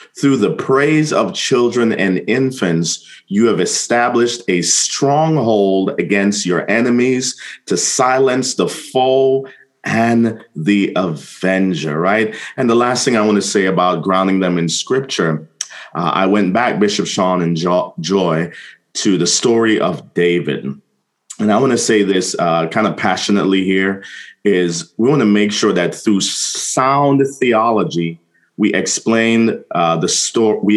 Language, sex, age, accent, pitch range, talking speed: English, male, 30-49, American, 90-125 Hz, 140 wpm